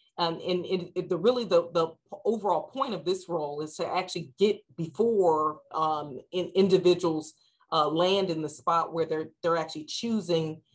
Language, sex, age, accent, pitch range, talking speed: English, female, 30-49, American, 155-195 Hz, 175 wpm